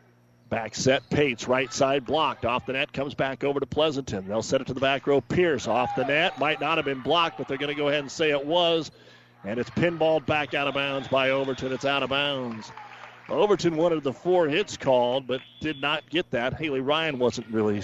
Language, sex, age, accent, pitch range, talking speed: English, male, 40-59, American, 120-145 Hz, 230 wpm